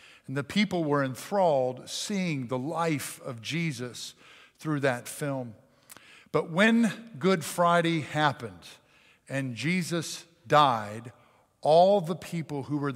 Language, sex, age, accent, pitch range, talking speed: English, male, 50-69, American, 130-180 Hz, 120 wpm